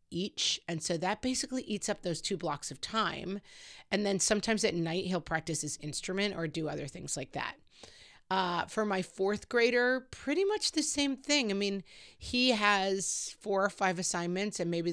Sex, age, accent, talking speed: female, 30-49, American, 190 wpm